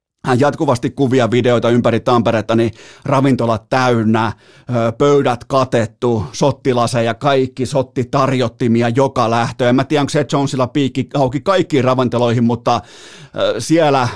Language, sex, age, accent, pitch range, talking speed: Finnish, male, 30-49, native, 115-135 Hz, 120 wpm